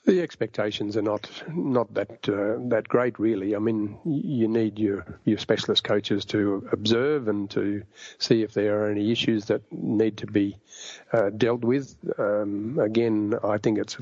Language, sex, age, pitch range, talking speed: English, male, 50-69, 105-115 Hz, 170 wpm